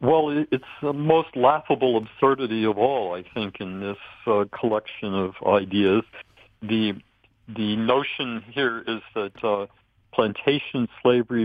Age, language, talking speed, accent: 60-79, English, 130 wpm, American